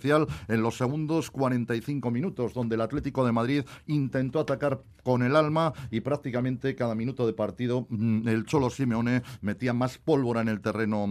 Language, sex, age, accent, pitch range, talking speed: Spanish, male, 40-59, Spanish, 115-145 Hz, 160 wpm